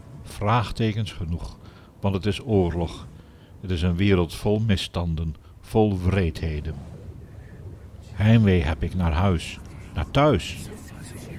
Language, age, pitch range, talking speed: Dutch, 60-79, 85-105 Hz, 110 wpm